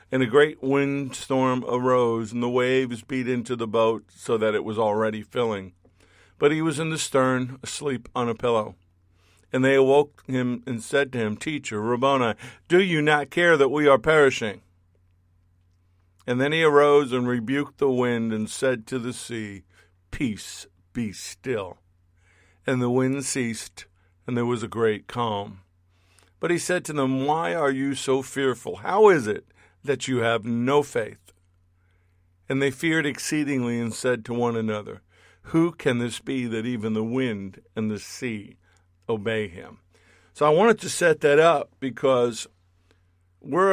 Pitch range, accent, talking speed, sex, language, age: 95-140 Hz, American, 165 wpm, male, English, 50-69